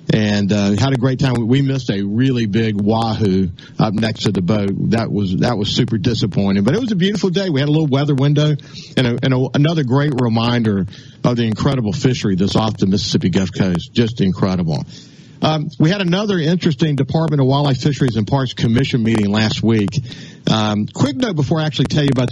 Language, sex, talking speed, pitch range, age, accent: English, male, 210 wpm, 110-150 Hz, 50-69, American